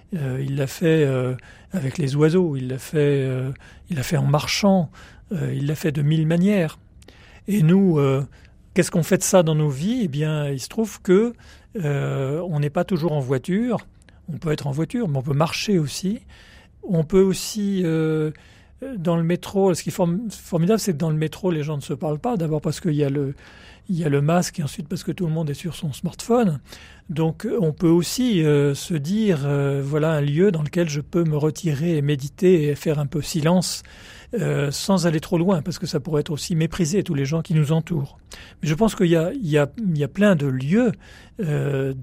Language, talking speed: French, 230 wpm